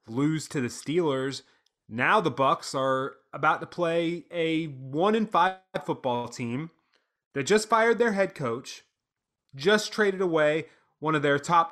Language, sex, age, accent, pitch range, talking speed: English, male, 30-49, American, 135-180 Hz, 145 wpm